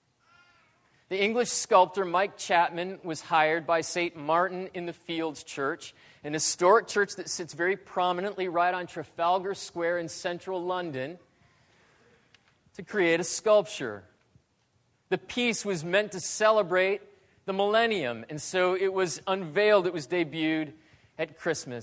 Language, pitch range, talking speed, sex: English, 145-190 Hz, 140 wpm, male